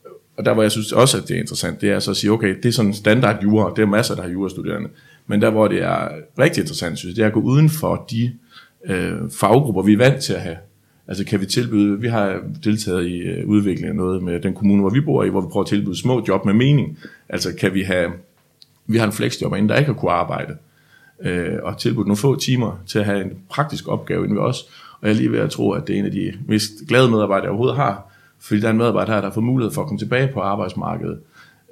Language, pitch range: Danish, 100-115 Hz